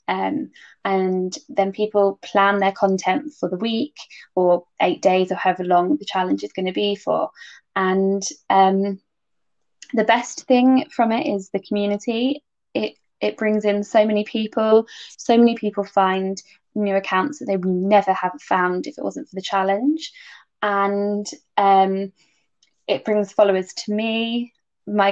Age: 10-29